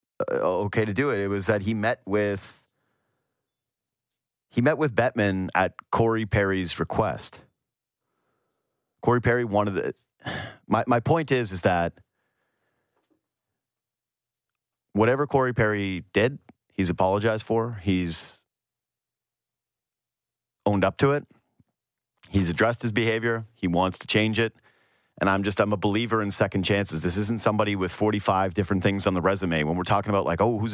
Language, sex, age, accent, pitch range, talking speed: English, male, 30-49, American, 95-120 Hz, 145 wpm